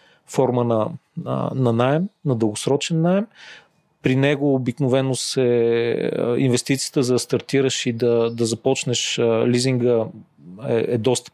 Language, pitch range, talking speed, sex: Bulgarian, 120-145 Hz, 115 wpm, male